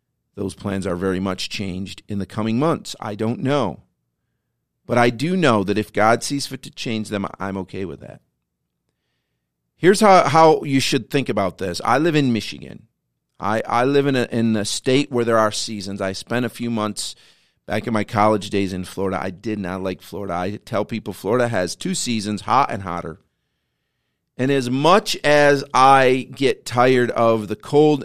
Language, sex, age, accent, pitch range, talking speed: English, male, 40-59, American, 95-125 Hz, 190 wpm